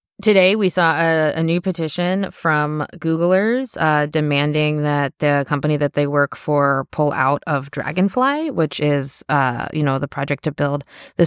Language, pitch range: English, 150-180 Hz